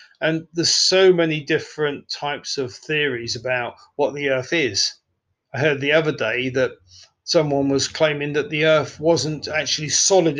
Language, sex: English, male